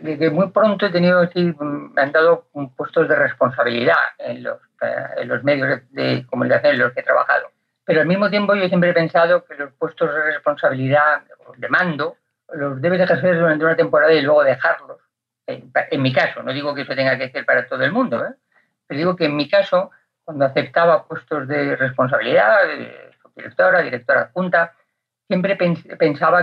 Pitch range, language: 140-180 Hz, Spanish